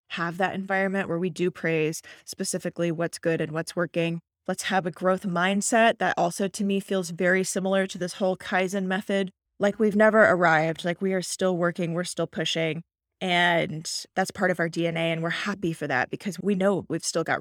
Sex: female